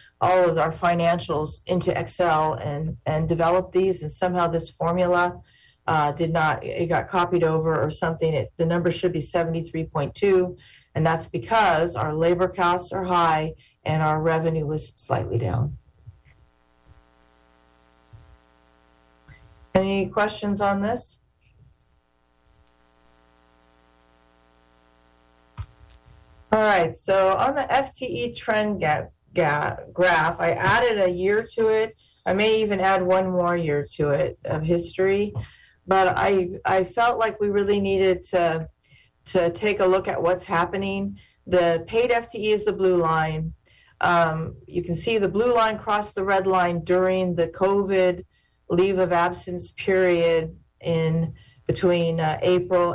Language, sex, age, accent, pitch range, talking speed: English, female, 40-59, American, 155-190 Hz, 135 wpm